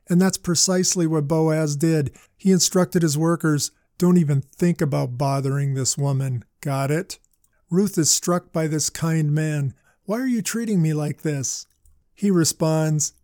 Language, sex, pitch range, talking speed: English, male, 145-170 Hz, 160 wpm